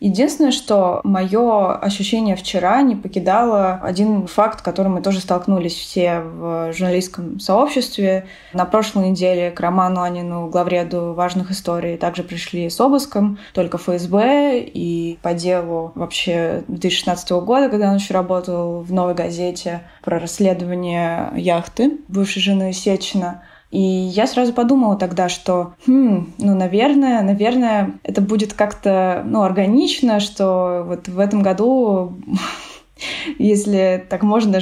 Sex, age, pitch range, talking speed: female, 20-39, 180-220 Hz, 130 wpm